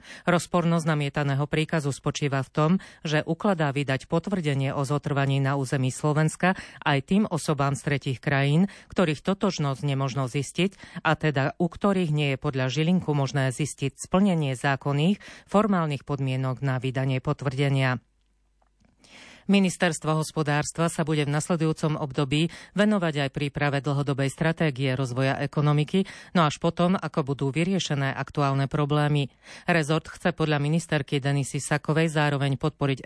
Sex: female